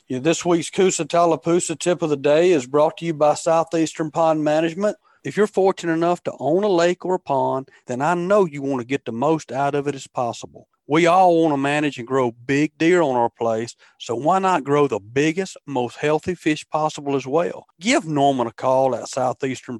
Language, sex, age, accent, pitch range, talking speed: English, male, 40-59, American, 130-165 Hz, 215 wpm